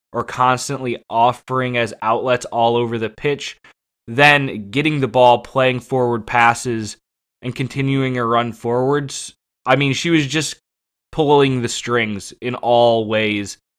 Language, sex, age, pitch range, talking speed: English, male, 20-39, 110-125 Hz, 140 wpm